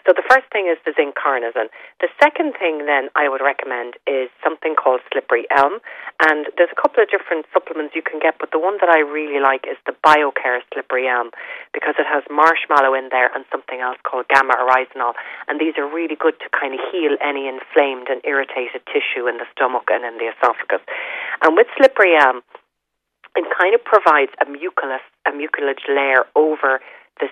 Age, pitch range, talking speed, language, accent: 40-59, 135-190 Hz, 195 wpm, English, Irish